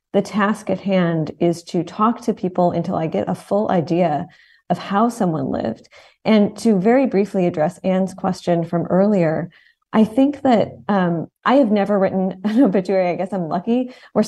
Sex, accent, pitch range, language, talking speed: female, American, 170-205 Hz, English, 180 wpm